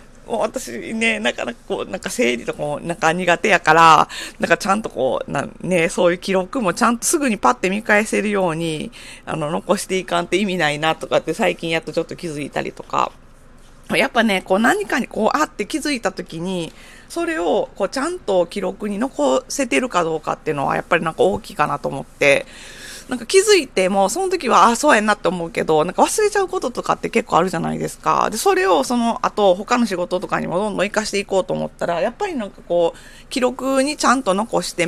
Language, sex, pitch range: Japanese, female, 170-260 Hz